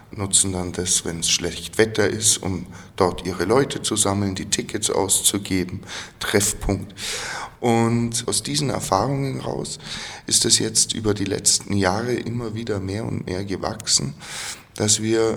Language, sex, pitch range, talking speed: German, male, 95-115 Hz, 150 wpm